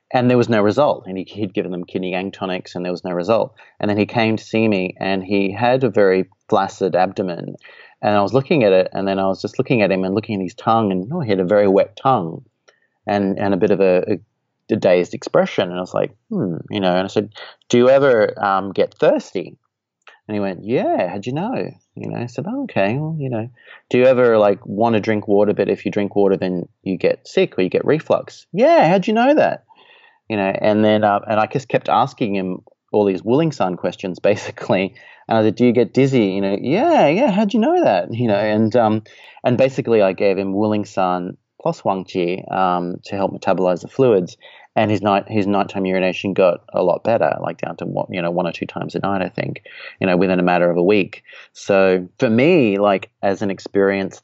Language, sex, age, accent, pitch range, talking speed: English, male, 30-49, Australian, 95-120 Hz, 235 wpm